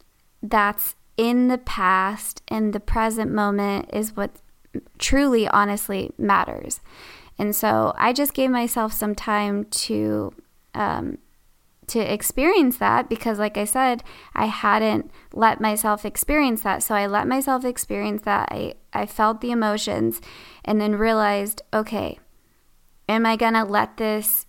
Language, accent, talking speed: English, American, 140 wpm